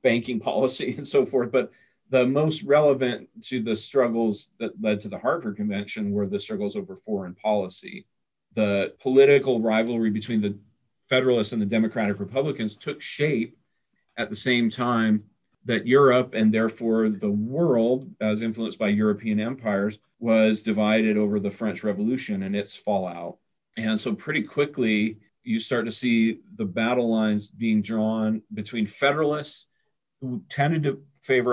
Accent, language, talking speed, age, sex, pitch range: American, English, 150 wpm, 40-59, male, 110-130 Hz